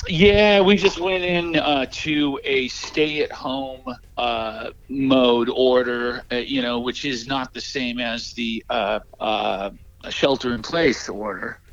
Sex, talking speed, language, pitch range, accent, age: male, 130 wpm, English, 120-150 Hz, American, 50-69